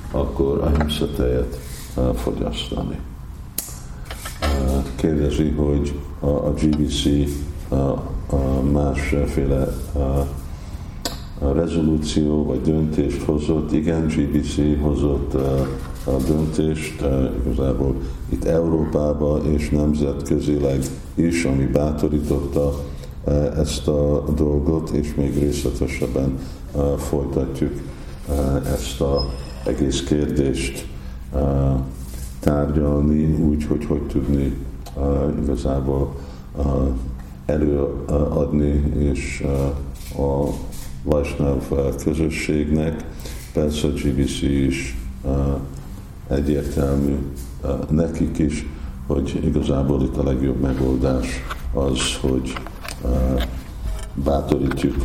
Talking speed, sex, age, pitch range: 75 wpm, male, 50-69, 65-75 Hz